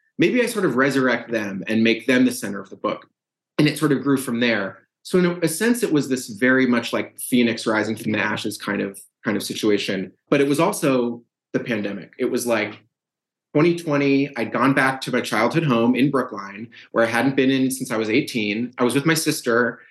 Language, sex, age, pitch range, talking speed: English, male, 30-49, 115-155 Hz, 225 wpm